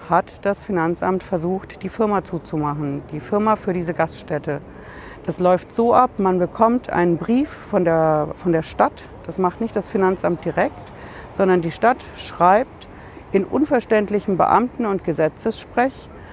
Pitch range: 165-205 Hz